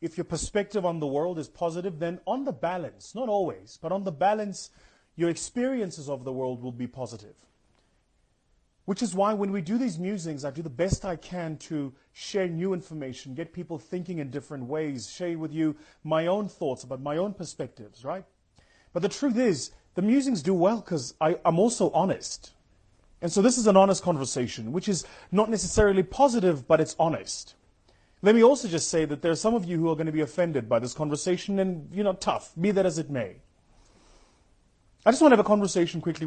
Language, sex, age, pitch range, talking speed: English, male, 30-49, 140-190 Hz, 205 wpm